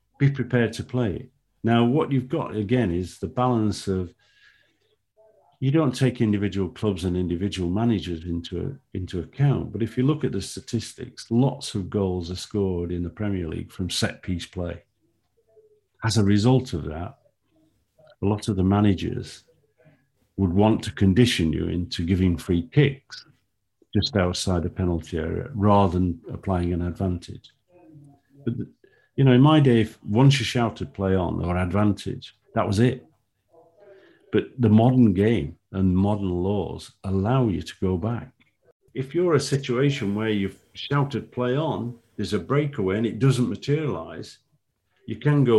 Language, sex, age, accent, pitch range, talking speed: English, male, 50-69, British, 95-135 Hz, 160 wpm